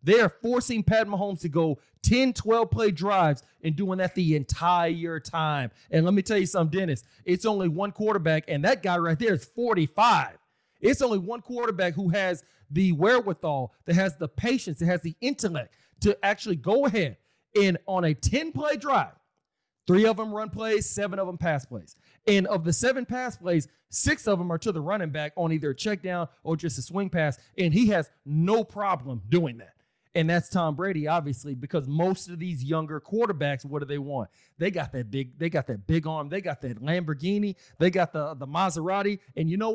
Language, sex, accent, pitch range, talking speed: English, male, American, 150-200 Hz, 205 wpm